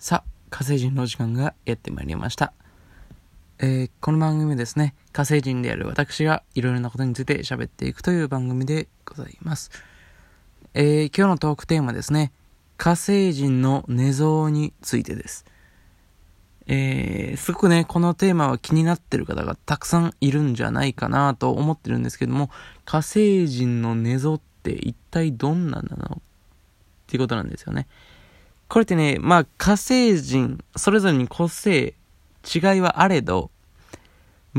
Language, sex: Japanese, male